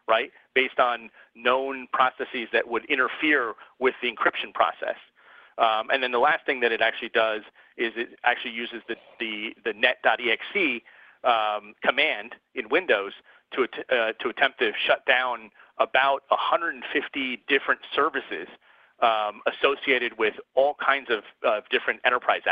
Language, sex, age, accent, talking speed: English, male, 40-59, American, 145 wpm